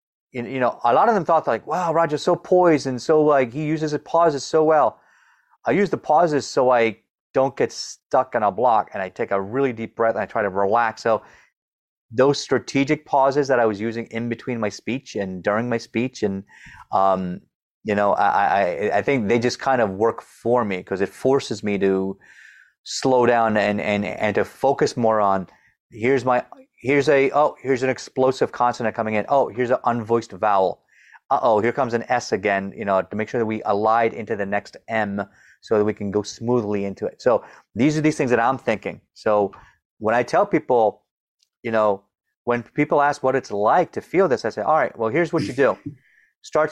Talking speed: 215 wpm